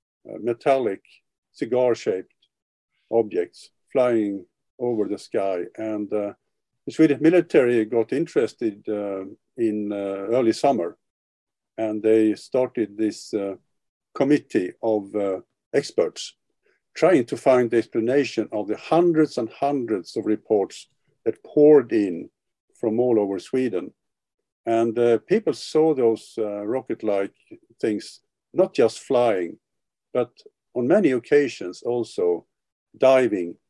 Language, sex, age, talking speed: English, male, 50-69, 115 wpm